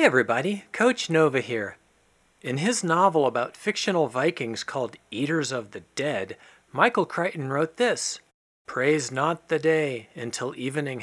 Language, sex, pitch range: English, male, 130-185 Hz